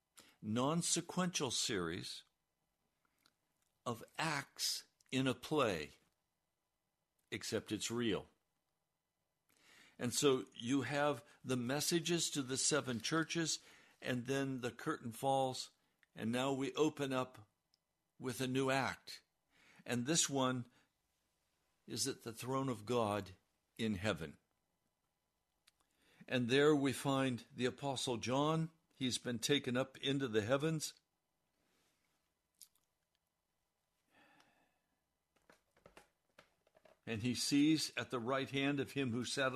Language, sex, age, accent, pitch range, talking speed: English, male, 60-79, American, 120-145 Hz, 105 wpm